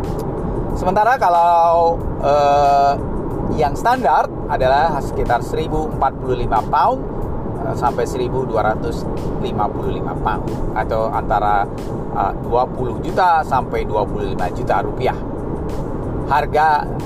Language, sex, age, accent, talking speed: Indonesian, male, 30-49, native, 80 wpm